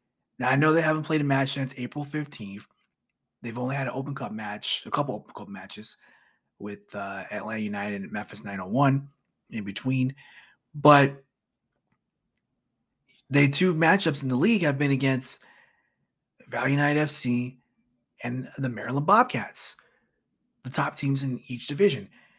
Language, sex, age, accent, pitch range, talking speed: English, male, 20-39, American, 125-150 Hz, 145 wpm